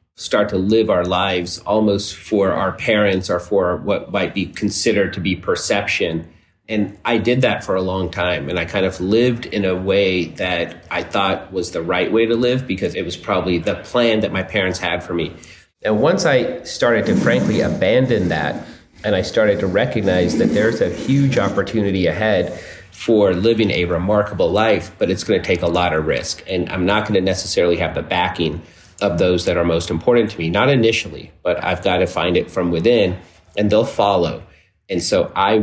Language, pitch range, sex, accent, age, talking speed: English, 85-105 Hz, male, American, 30-49, 200 wpm